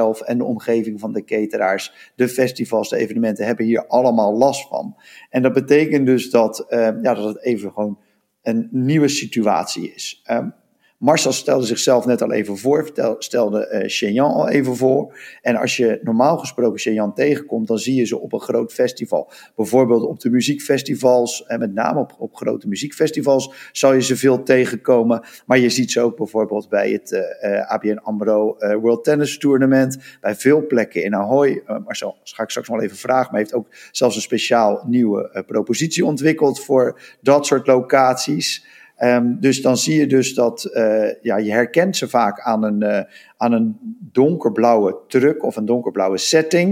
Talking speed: 175 wpm